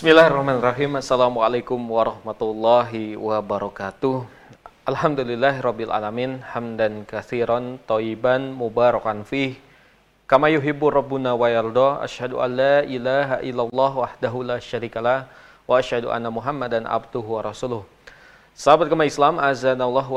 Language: Indonesian